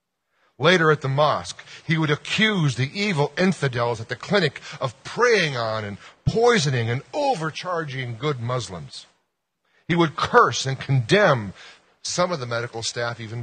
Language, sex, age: English, male, 40-59